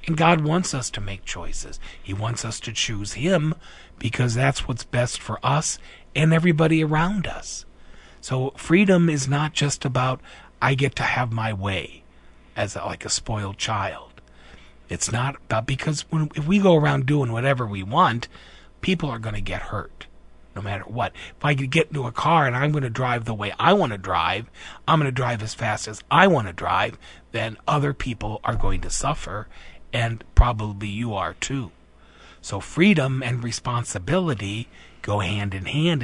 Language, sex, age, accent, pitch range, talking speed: English, male, 40-59, American, 100-140 Hz, 175 wpm